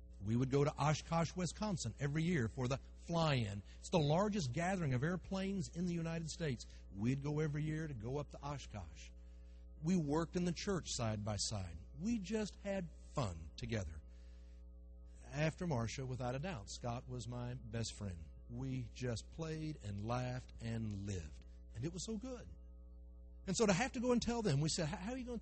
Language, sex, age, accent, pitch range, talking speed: English, male, 60-79, American, 105-165 Hz, 190 wpm